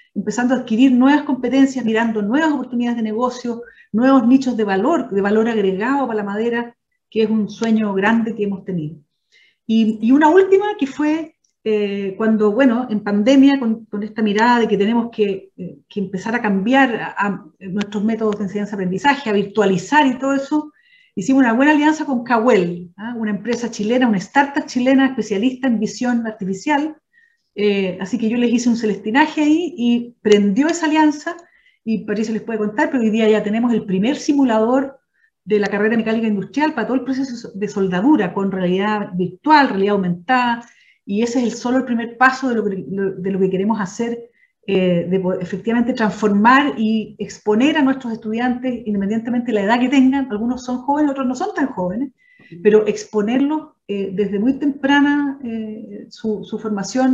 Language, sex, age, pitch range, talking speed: Spanish, female, 40-59, 210-270 Hz, 185 wpm